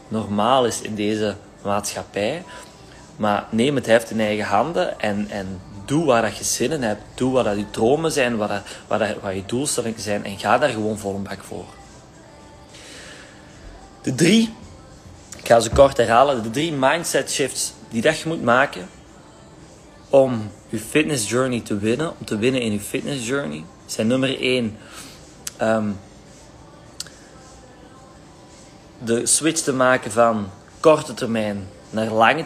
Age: 30-49